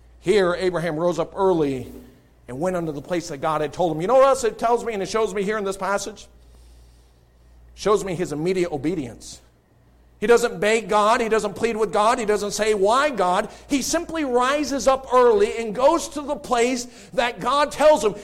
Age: 50-69